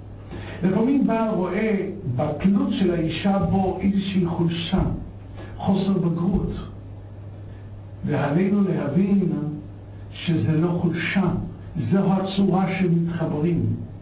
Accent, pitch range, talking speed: native, 120-190 Hz, 80 wpm